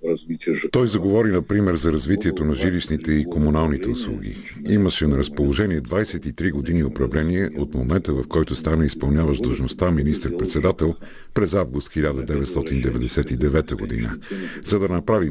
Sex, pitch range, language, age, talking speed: male, 70-90 Hz, Bulgarian, 50-69, 120 wpm